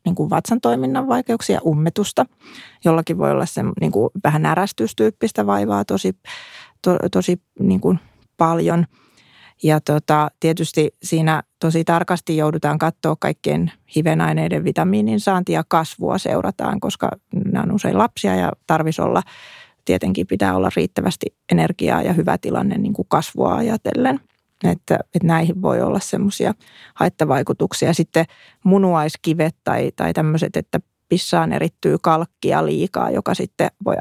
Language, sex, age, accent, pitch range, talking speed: Finnish, female, 30-49, native, 155-190 Hz, 125 wpm